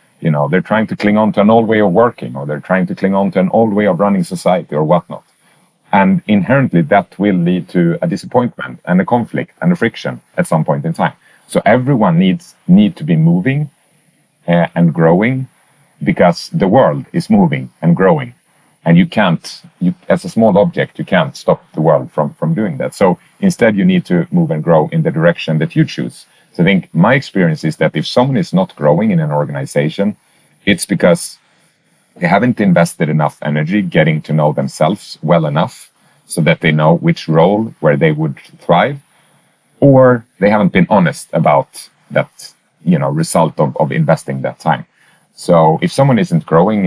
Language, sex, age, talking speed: English, male, 40-59, 195 wpm